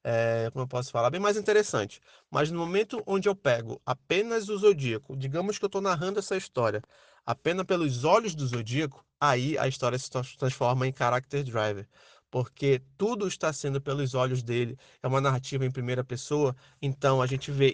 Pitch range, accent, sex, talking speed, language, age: 130-170 Hz, Brazilian, male, 180 wpm, Portuguese, 20-39